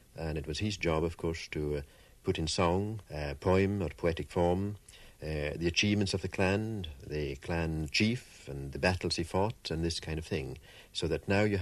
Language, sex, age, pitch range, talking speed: English, male, 60-79, 80-105 Hz, 205 wpm